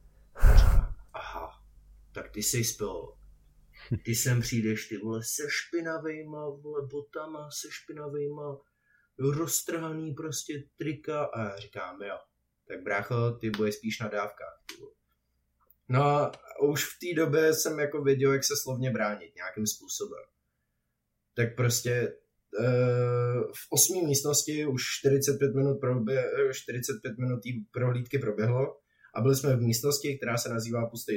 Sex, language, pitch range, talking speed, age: male, Czech, 115-145 Hz, 130 wpm, 20-39